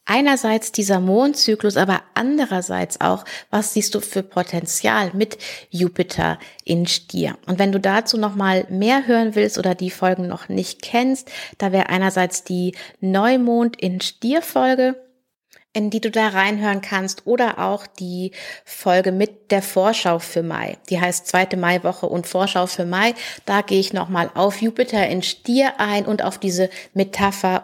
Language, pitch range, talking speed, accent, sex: German, 190-235 Hz, 160 wpm, German, female